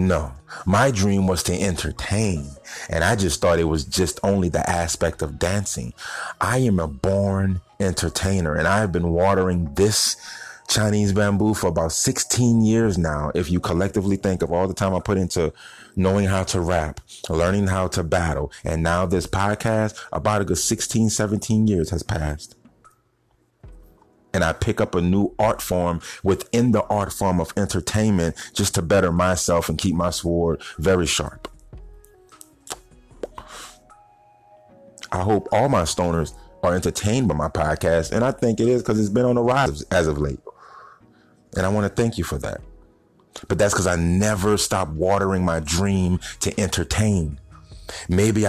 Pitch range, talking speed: 85-105 Hz, 165 wpm